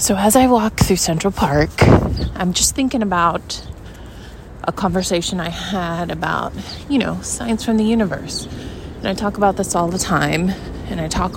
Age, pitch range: 20-39, 150-220 Hz